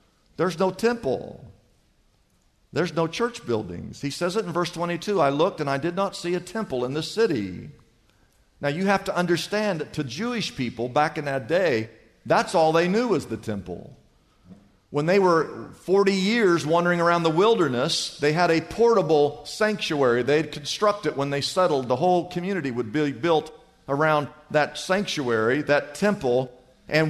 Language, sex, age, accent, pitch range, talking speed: English, male, 50-69, American, 150-205 Hz, 170 wpm